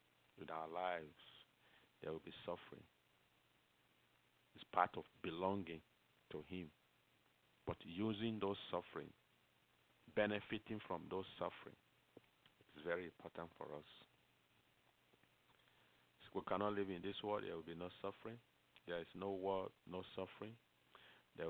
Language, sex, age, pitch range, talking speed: English, male, 50-69, 80-100 Hz, 125 wpm